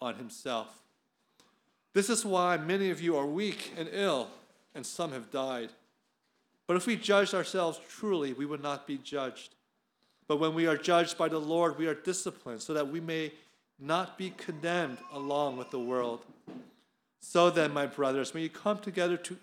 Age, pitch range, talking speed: 40-59, 140-190 Hz, 180 wpm